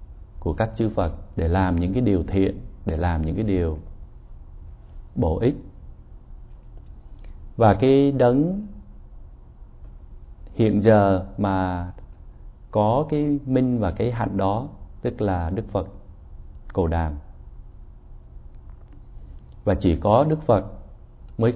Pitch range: 80-110 Hz